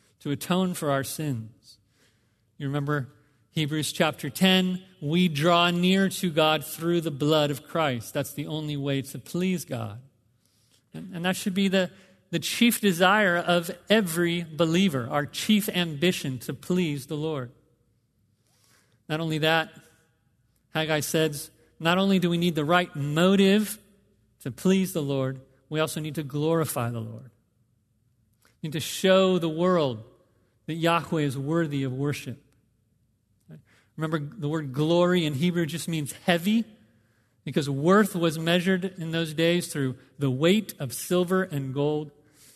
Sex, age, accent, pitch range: male, 40-59, American, 130-180 Hz